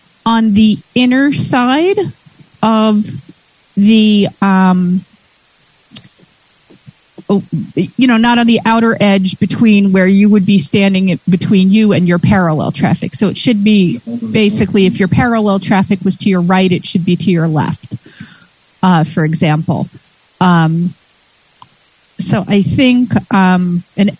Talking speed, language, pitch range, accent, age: 135 wpm, English, 185-230 Hz, American, 40-59